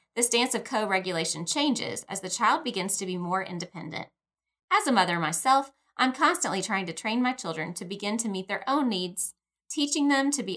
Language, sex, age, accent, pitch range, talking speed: English, female, 20-39, American, 185-255 Hz, 200 wpm